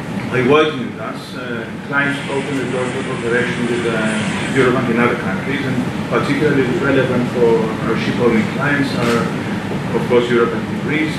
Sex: male